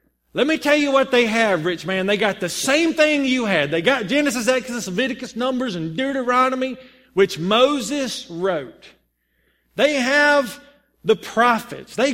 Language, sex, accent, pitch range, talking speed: English, male, American, 210-285 Hz, 160 wpm